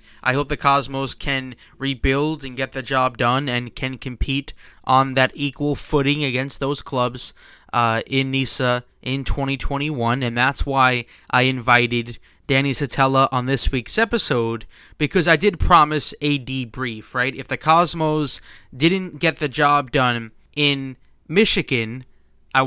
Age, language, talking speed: 20-39, English, 145 wpm